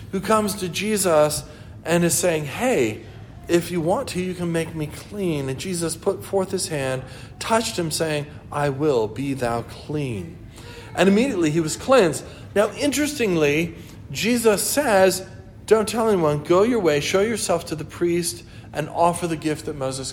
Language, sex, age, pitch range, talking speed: English, male, 40-59, 125-190 Hz, 170 wpm